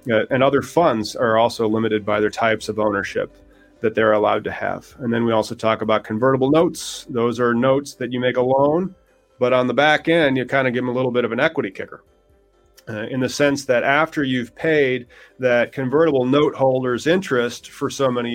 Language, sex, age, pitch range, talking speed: English, male, 30-49, 110-140 Hz, 215 wpm